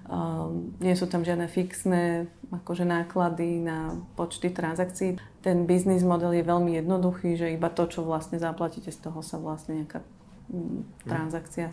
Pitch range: 165-180 Hz